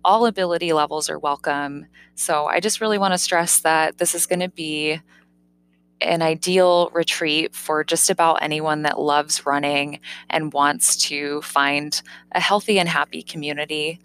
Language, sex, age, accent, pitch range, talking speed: English, female, 20-39, American, 155-200 Hz, 160 wpm